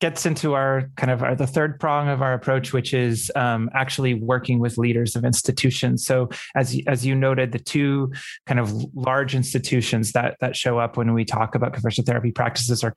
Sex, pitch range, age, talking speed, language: male, 115-135 Hz, 20-39, 205 wpm, English